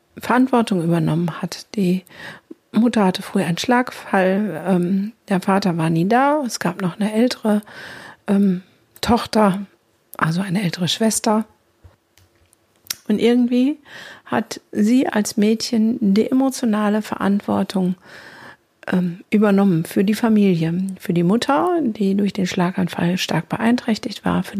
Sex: female